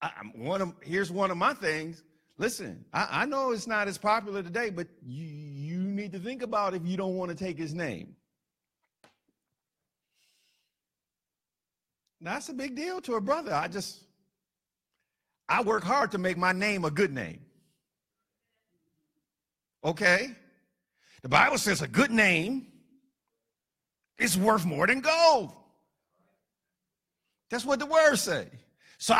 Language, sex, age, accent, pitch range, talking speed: English, male, 50-69, American, 185-270 Hz, 140 wpm